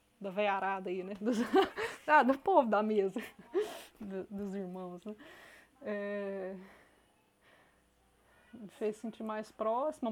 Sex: female